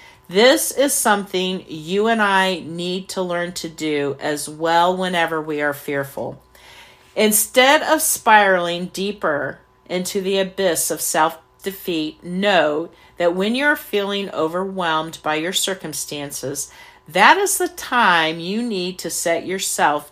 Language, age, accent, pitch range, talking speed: English, 50-69, American, 165-210 Hz, 130 wpm